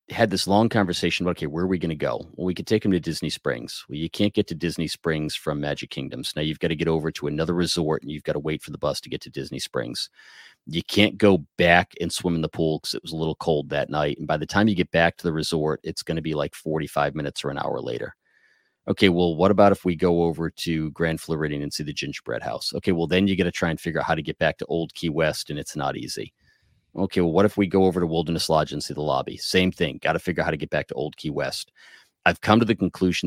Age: 30-49